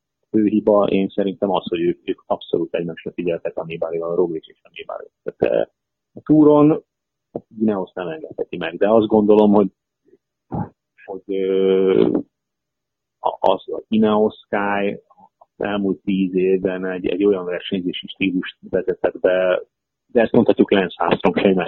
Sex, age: male, 30-49